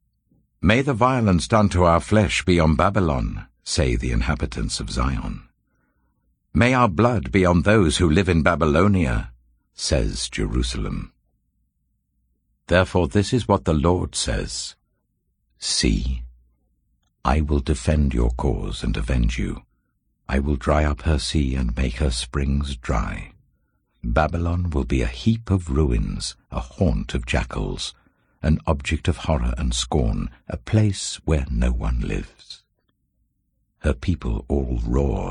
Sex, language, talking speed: male, English, 140 wpm